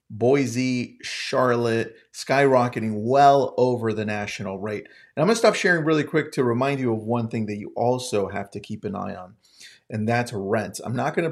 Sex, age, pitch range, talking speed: male, 30-49, 110-140 Hz, 190 wpm